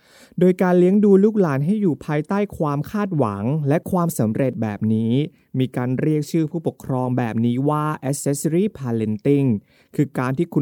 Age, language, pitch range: 20-39, Thai, 125-175 Hz